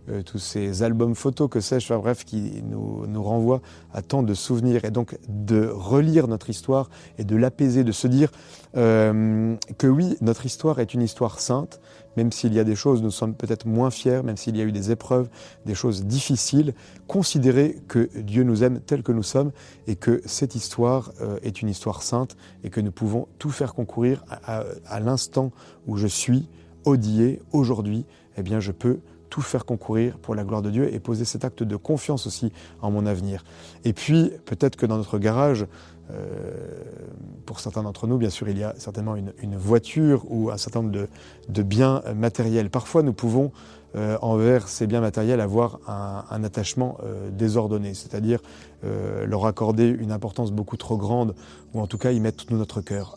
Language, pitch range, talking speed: French, 105-125 Hz, 195 wpm